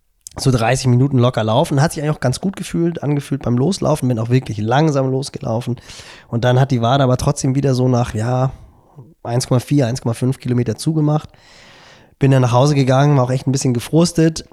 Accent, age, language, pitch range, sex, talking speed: German, 20-39, German, 125-140 Hz, male, 190 wpm